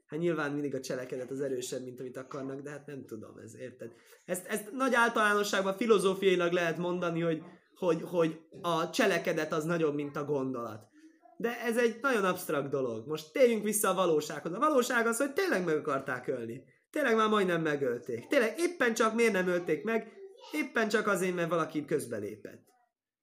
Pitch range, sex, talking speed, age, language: 145-220 Hz, male, 180 wpm, 20-39, Hungarian